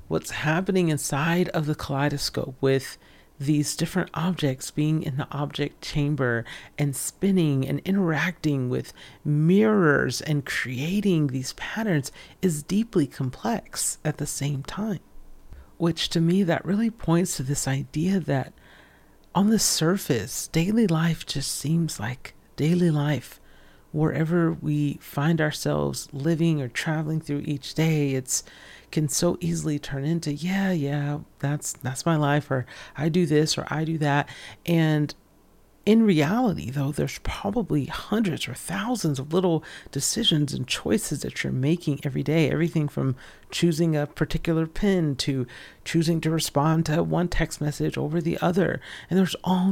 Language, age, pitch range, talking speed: English, 40-59, 145-170 Hz, 145 wpm